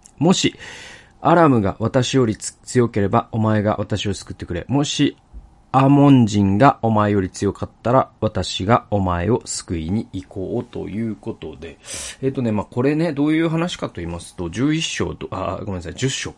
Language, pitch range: Japanese, 95-130 Hz